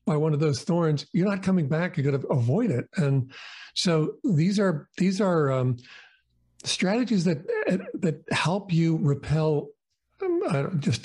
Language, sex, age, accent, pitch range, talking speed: English, male, 50-69, American, 145-185 Hz, 165 wpm